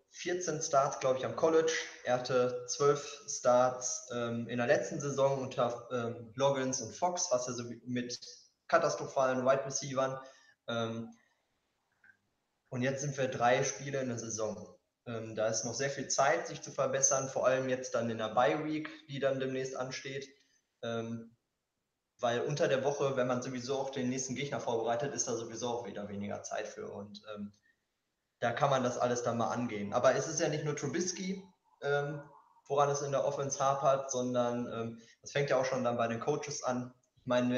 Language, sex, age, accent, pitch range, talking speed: German, male, 20-39, German, 120-145 Hz, 185 wpm